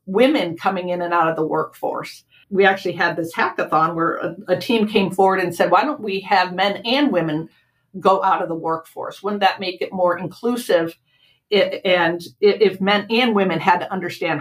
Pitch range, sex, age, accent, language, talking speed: 170-195 Hz, female, 50-69, American, English, 200 wpm